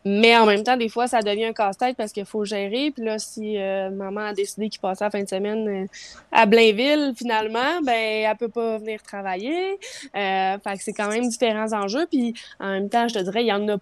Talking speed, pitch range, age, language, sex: 245 wpm, 210-245 Hz, 20-39, French, female